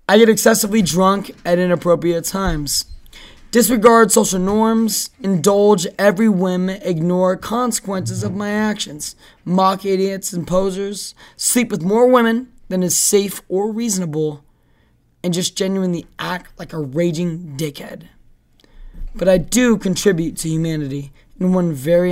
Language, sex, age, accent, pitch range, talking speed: English, male, 20-39, American, 170-210 Hz, 130 wpm